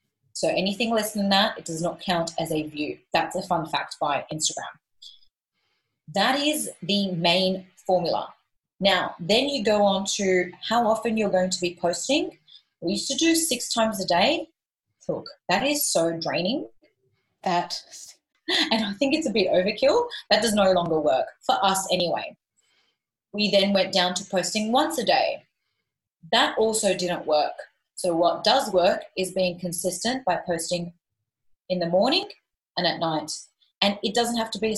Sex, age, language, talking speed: female, 30-49, English, 175 wpm